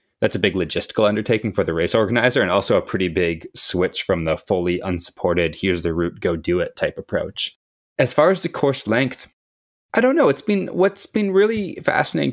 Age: 20-39